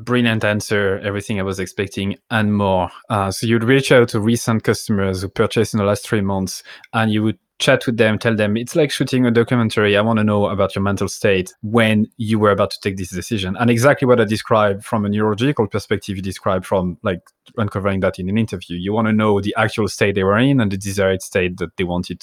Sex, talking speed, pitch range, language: male, 235 wpm, 100-120 Hz, English